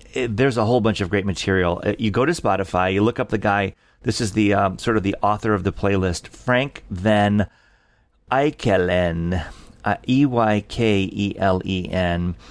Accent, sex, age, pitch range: American, male, 40-59, 95-125 Hz